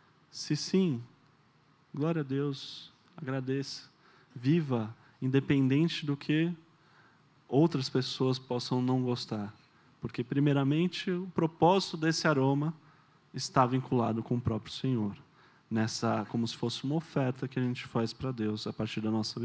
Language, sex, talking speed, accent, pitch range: Portuguese, male, 135 wpm, Brazilian, 125-165 Hz